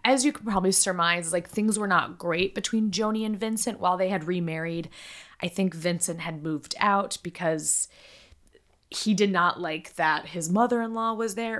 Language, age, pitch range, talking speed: English, 20-39, 160-200 Hz, 175 wpm